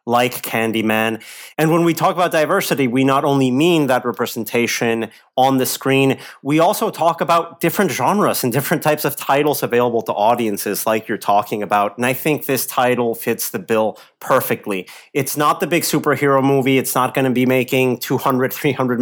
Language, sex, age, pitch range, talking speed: English, male, 30-49, 125-160 Hz, 185 wpm